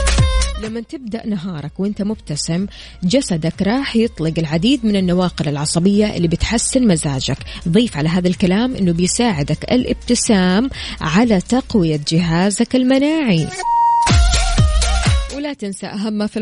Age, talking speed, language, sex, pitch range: 20-39, 115 wpm, Arabic, female, 170-225 Hz